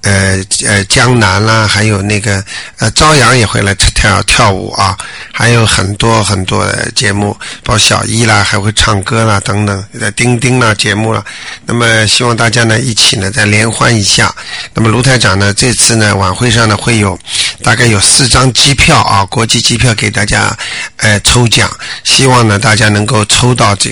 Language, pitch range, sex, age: Chinese, 105-120 Hz, male, 50-69